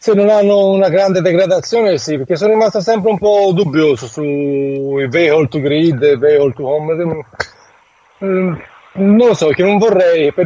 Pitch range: 145-175 Hz